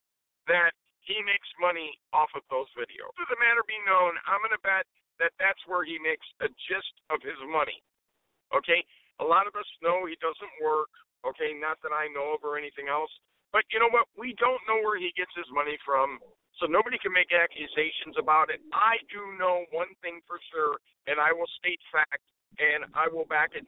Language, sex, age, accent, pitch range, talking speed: English, male, 50-69, American, 150-220 Hz, 210 wpm